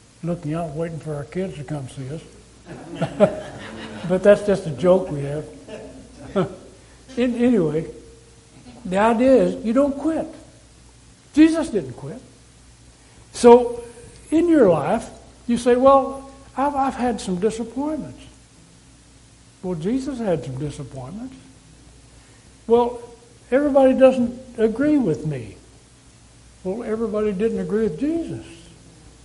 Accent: American